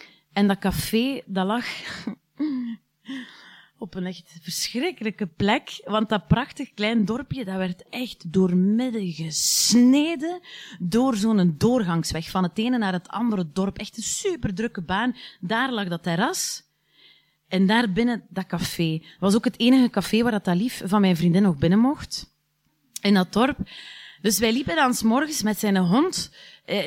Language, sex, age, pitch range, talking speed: Dutch, female, 30-49, 190-240 Hz, 160 wpm